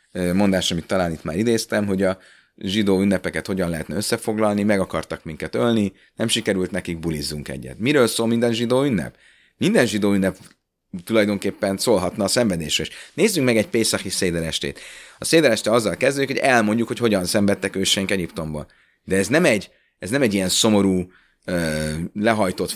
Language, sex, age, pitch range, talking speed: Hungarian, male, 30-49, 85-105 Hz, 160 wpm